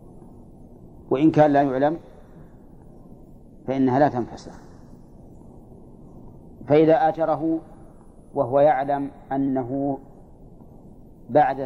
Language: Arabic